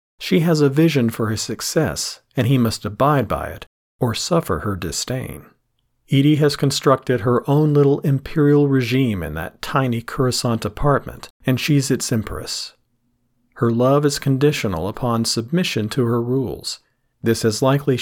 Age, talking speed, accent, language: 40-59, 155 wpm, American, English